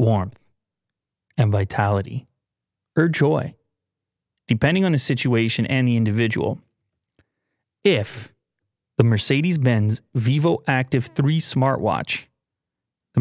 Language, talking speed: English, 90 wpm